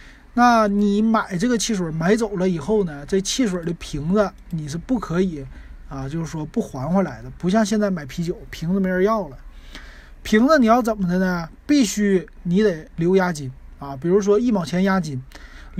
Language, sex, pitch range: Chinese, male, 160-215 Hz